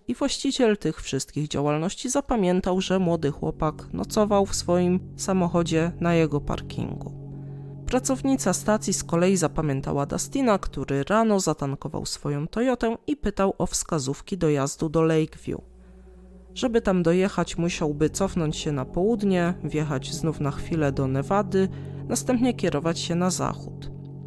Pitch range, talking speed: 145-200 Hz, 130 wpm